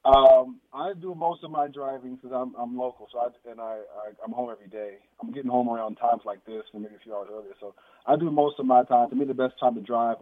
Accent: American